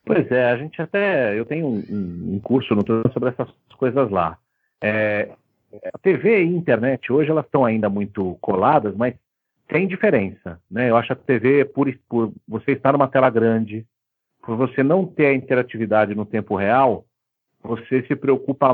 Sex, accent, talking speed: male, Brazilian, 175 wpm